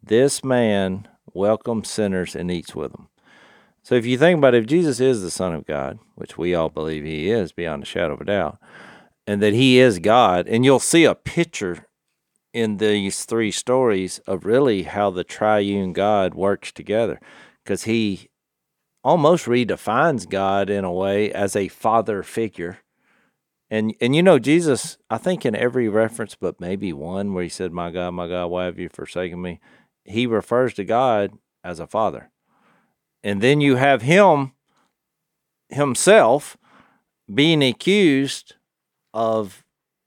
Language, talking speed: English, 160 wpm